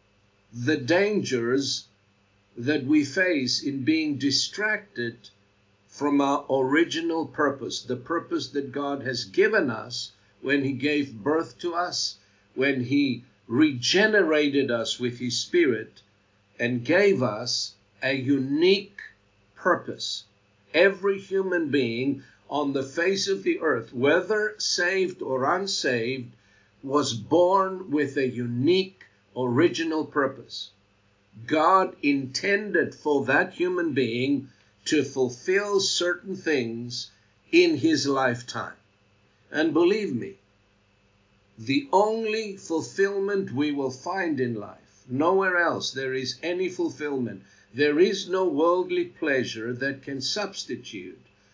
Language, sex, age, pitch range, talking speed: English, male, 50-69, 115-175 Hz, 110 wpm